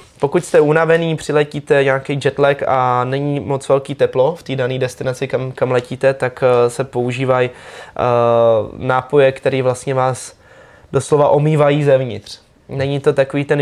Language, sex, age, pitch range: Czech, male, 20-39, 125-140 Hz